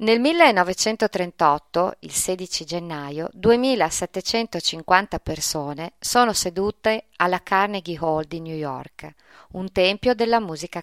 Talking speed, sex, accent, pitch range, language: 105 wpm, female, native, 165-215 Hz, Italian